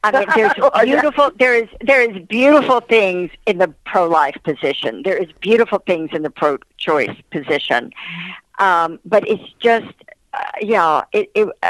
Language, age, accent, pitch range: English, 50-69, American, 160-205 Hz